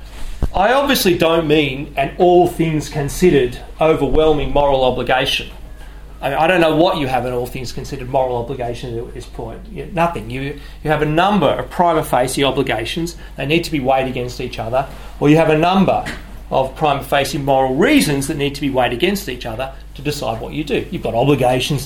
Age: 30-49